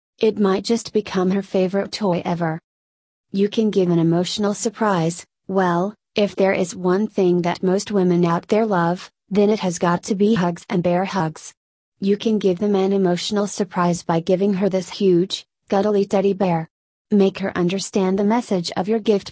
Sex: female